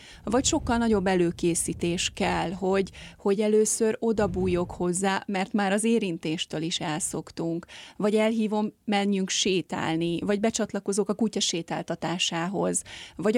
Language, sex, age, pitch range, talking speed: Hungarian, female, 30-49, 190-240 Hz, 115 wpm